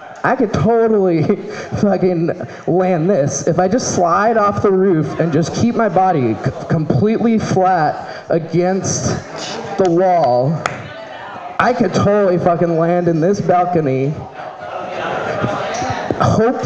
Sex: male